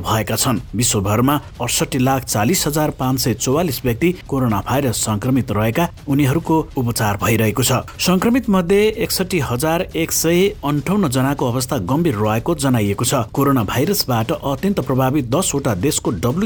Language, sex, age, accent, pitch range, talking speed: English, male, 60-79, Indian, 110-145 Hz, 115 wpm